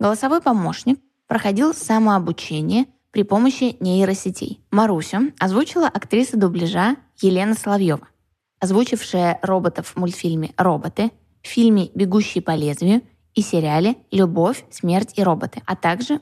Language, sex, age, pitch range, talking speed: Russian, female, 20-39, 175-230 Hz, 110 wpm